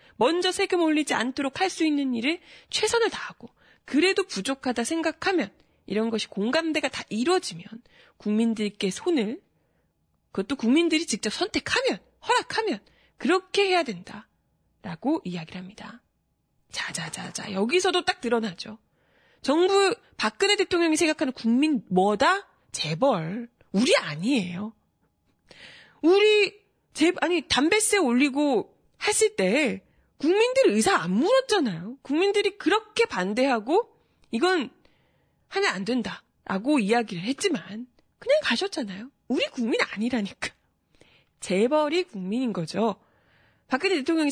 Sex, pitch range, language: female, 225-370 Hz, Korean